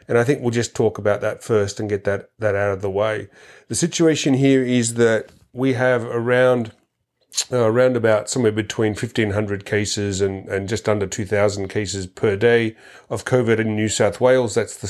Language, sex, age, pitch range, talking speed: English, male, 40-59, 100-120 Hz, 200 wpm